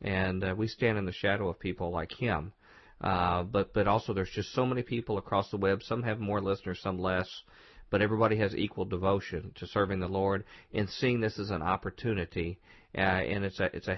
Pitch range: 95-115 Hz